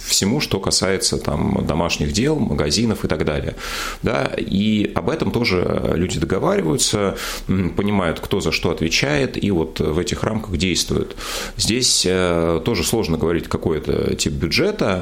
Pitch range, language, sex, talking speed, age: 75-100 Hz, Russian, male, 145 wpm, 30-49